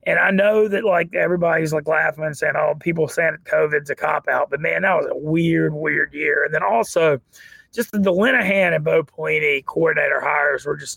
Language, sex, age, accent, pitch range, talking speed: English, male, 30-49, American, 150-205 Hz, 200 wpm